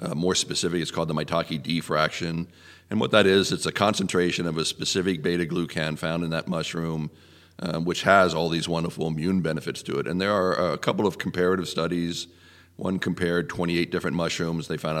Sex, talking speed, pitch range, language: male, 190 wpm, 85-95 Hz, English